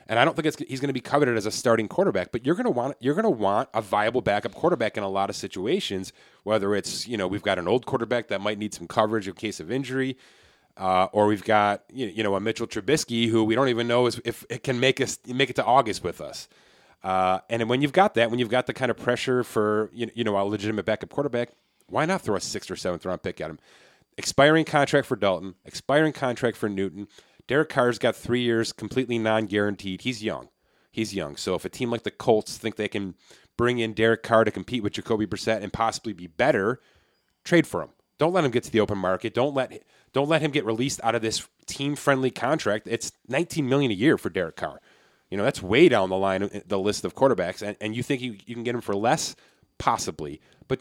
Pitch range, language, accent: 105-130 Hz, English, American